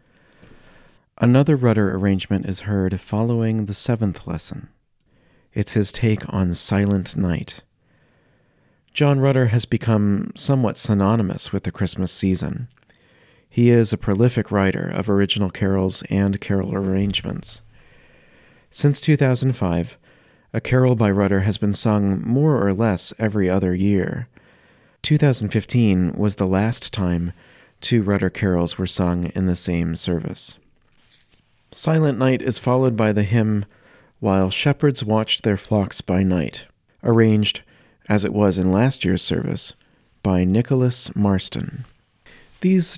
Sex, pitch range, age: male, 95-120 Hz, 40-59